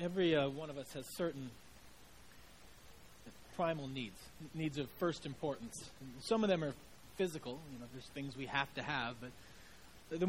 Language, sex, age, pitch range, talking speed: English, male, 40-59, 140-175 Hz, 155 wpm